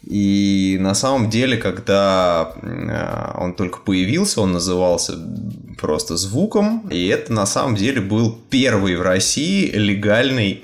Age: 20-39